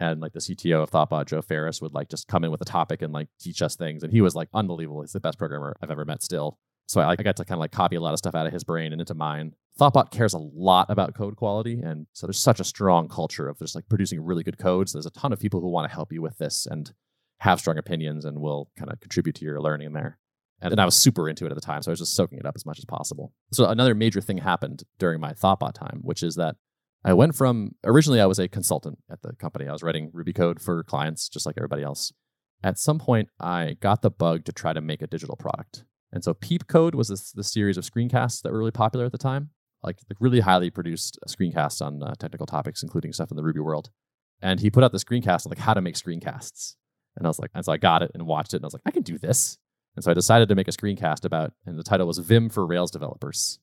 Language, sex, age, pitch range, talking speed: English, male, 30-49, 80-110 Hz, 280 wpm